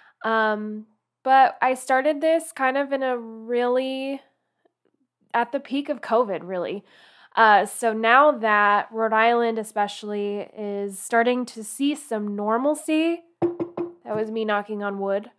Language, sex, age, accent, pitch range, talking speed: English, female, 10-29, American, 205-240 Hz, 135 wpm